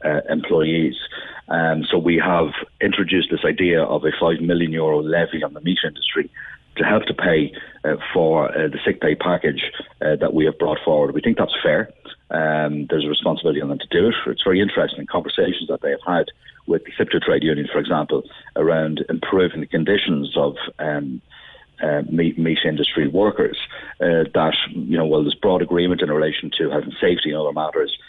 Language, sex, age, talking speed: English, male, 40-59, 200 wpm